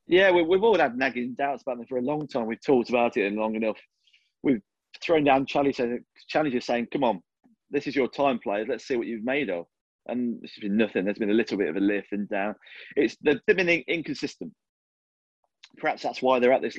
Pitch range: 120-180 Hz